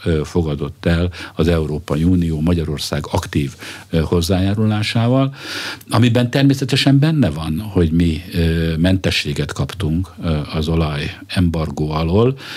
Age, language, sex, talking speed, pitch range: 50-69, Hungarian, male, 90 wpm, 80-100 Hz